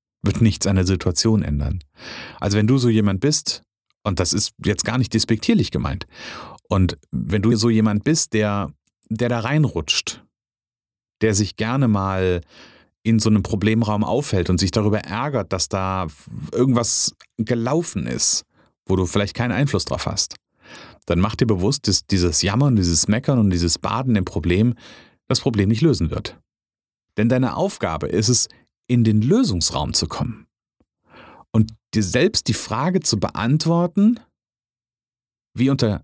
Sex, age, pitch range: male, 40-59, 100-135 Hz